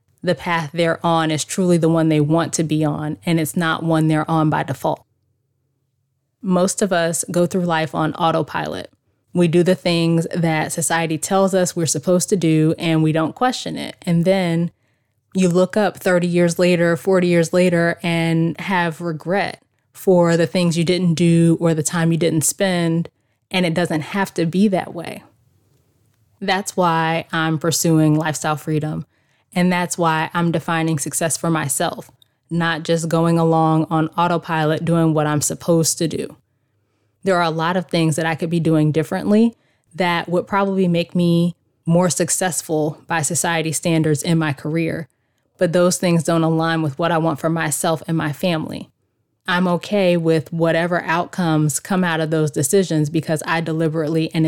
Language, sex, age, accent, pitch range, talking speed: English, female, 20-39, American, 155-175 Hz, 175 wpm